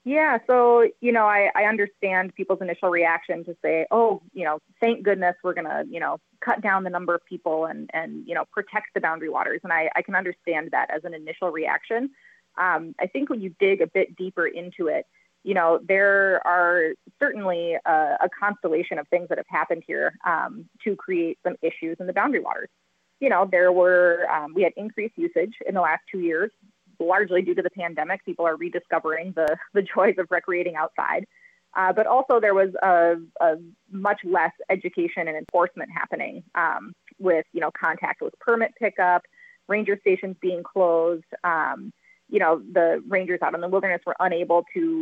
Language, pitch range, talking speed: English, 170-220 Hz, 195 wpm